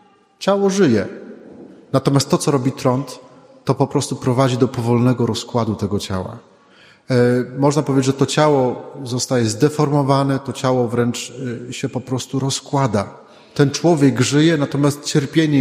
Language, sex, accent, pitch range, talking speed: Polish, male, native, 125-145 Hz, 135 wpm